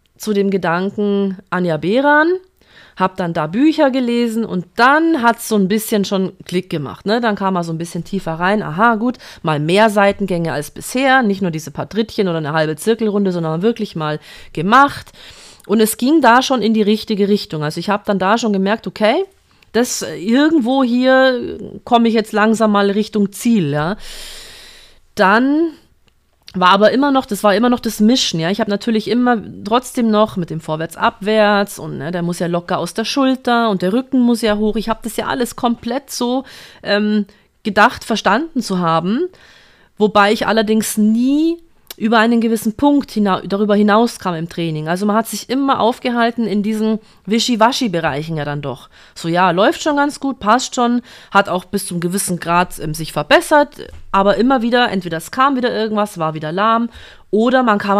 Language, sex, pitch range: German, female, 180-235 Hz